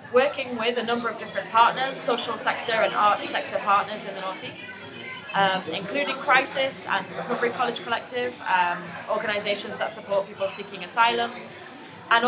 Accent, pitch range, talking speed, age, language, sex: British, 200-250 Hz, 150 wpm, 20-39, English, female